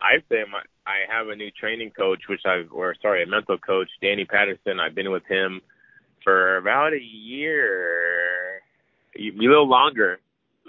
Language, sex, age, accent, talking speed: English, male, 20-39, American, 165 wpm